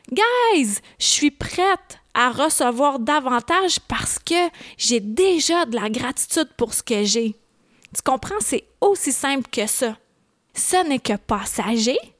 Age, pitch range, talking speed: 20-39, 240-370 Hz, 145 wpm